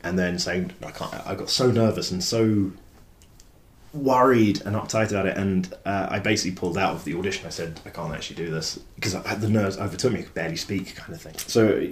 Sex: male